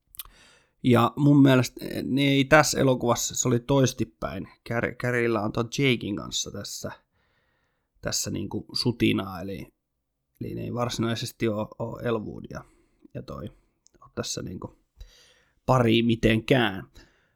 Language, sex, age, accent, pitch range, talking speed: Finnish, male, 20-39, native, 115-130 Hz, 125 wpm